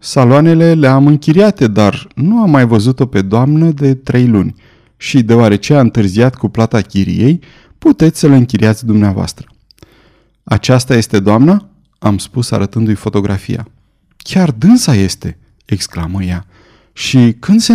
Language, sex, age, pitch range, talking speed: Romanian, male, 30-49, 105-150 Hz, 135 wpm